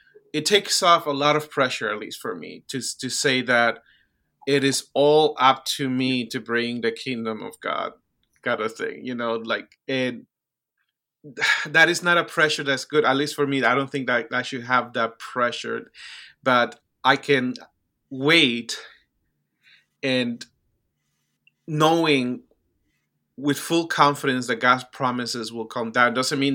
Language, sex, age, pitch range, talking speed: English, male, 30-49, 120-145 Hz, 160 wpm